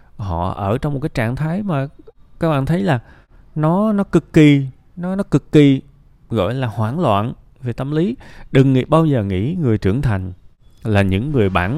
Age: 20-39